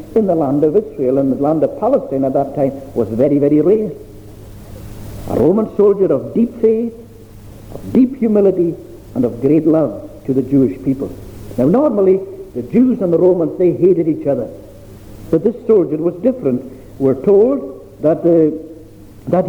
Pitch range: 120-200 Hz